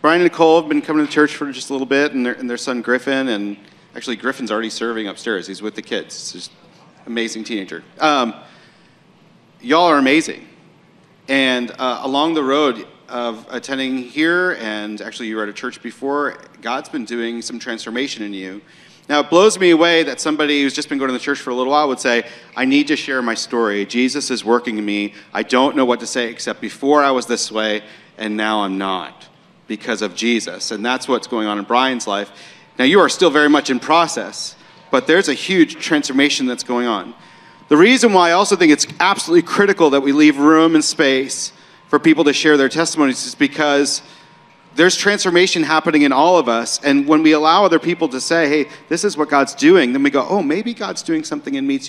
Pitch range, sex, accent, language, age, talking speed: 120-155 Hz, male, American, English, 40-59, 215 wpm